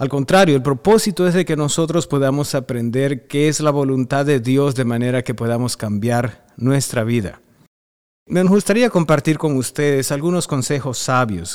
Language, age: English, 50-69